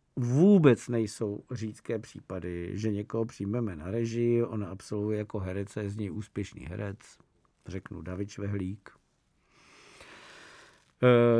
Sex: male